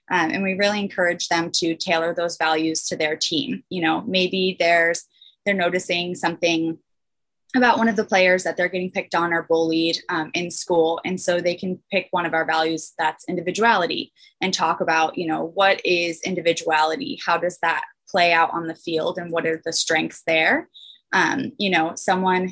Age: 20-39